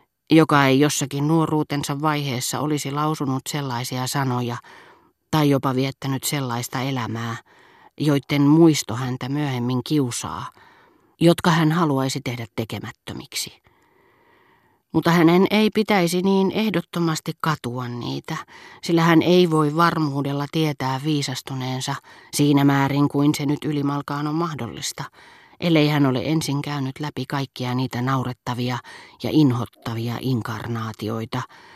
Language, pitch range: Finnish, 125-150 Hz